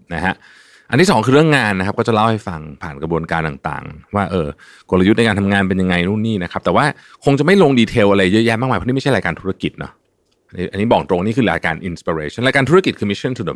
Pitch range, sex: 90-125 Hz, male